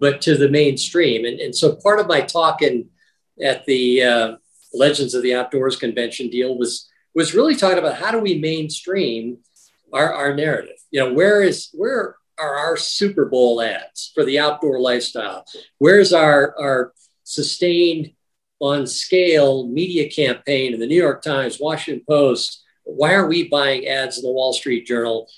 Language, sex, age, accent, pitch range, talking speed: English, male, 50-69, American, 130-175 Hz, 170 wpm